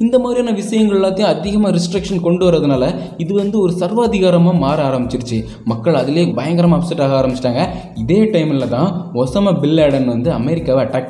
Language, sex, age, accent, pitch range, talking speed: Tamil, male, 20-39, native, 130-180 Hz, 145 wpm